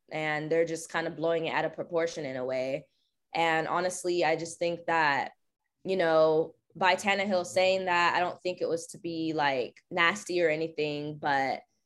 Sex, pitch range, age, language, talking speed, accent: female, 165-190 Hz, 10-29, English, 185 wpm, American